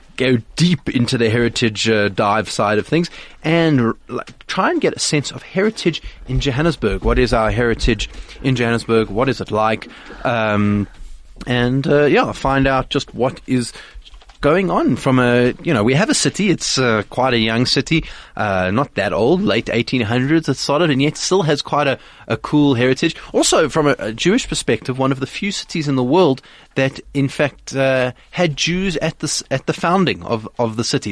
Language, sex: English, male